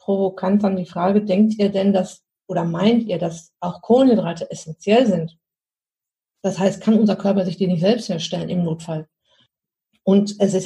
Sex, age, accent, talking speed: female, 50-69, German, 175 wpm